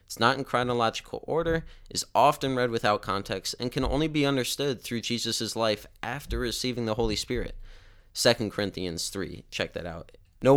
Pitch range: 105-135 Hz